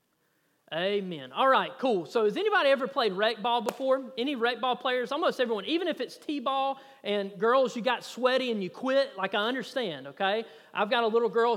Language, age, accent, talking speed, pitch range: English, 30-49, American, 200 wpm, 190-255 Hz